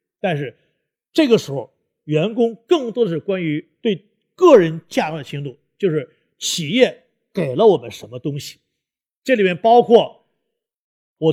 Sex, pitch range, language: male, 150-225 Hz, Chinese